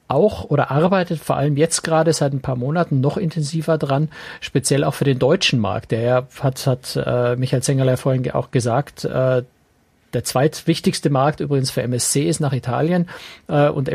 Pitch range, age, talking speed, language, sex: 130-150 Hz, 50-69, 180 wpm, German, male